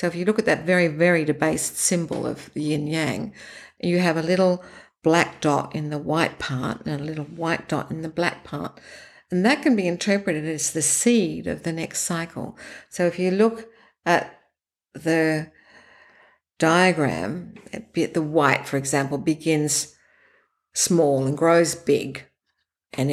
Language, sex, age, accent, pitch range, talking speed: English, female, 60-79, Australian, 155-195 Hz, 155 wpm